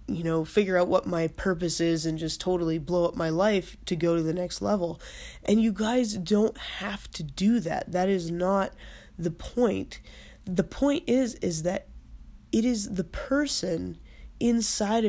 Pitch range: 170-215 Hz